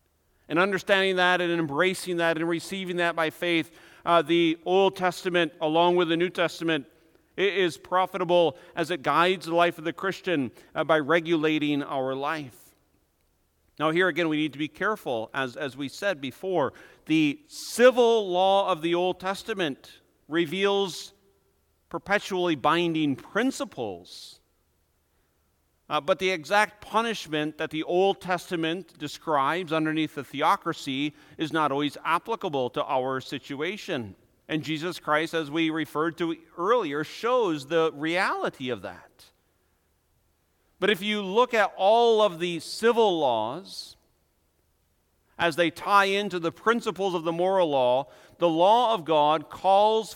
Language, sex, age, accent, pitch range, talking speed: English, male, 50-69, American, 140-185 Hz, 140 wpm